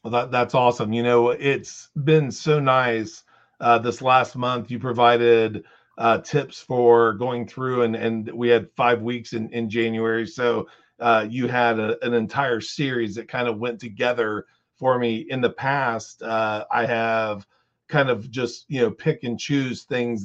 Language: English